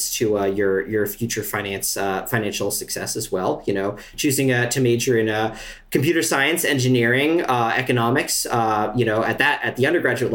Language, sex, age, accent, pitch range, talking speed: English, male, 40-59, American, 115-135 Hz, 185 wpm